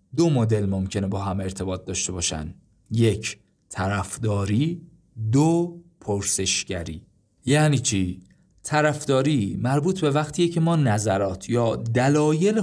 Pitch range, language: 105-135 Hz, Persian